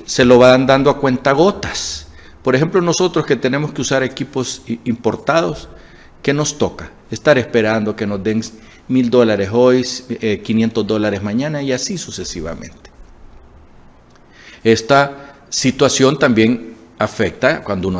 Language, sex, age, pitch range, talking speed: Spanish, male, 50-69, 95-130 Hz, 130 wpm